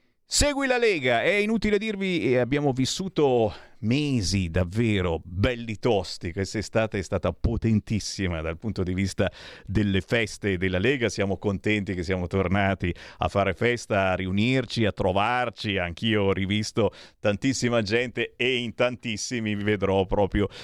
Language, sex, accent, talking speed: Italian, male, native, 140 wpm